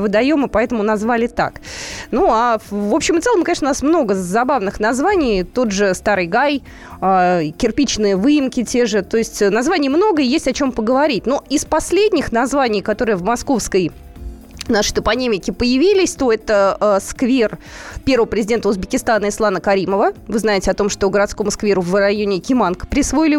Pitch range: 205-280 Hz